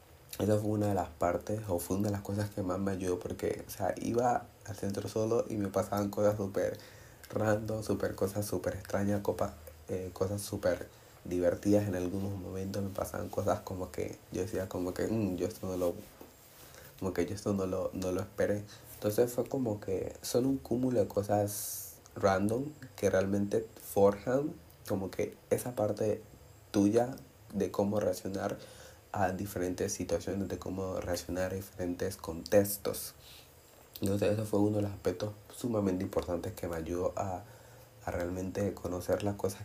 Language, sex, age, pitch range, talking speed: Spanish, male, 30-49, 90-105 Hz, 170 wpm